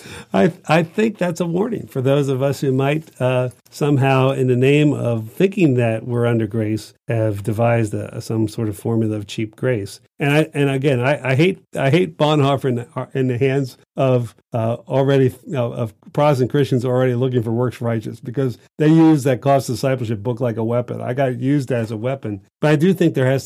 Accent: American